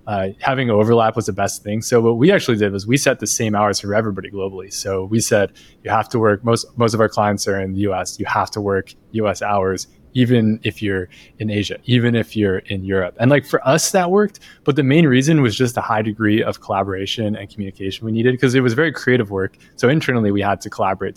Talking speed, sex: 245 wpm, male